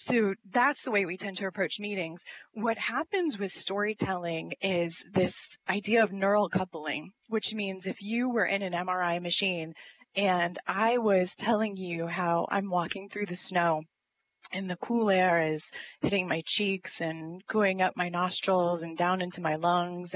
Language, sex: English, female